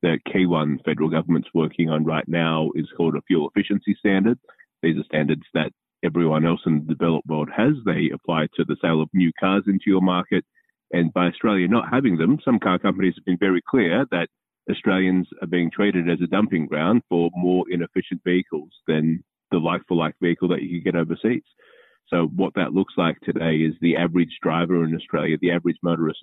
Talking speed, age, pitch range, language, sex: 200 wpm, 30-49, 80-90 Hz, English, male